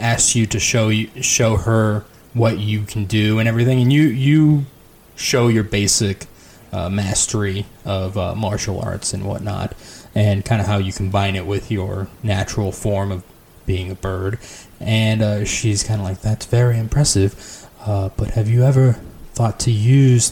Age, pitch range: 20-39, 100-115 Hz